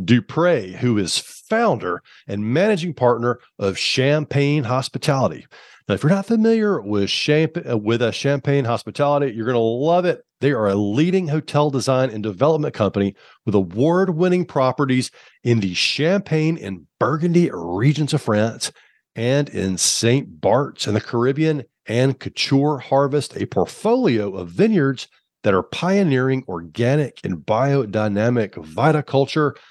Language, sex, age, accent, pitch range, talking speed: English, male, 40-59, American, 110-150 Hz, 135 wpm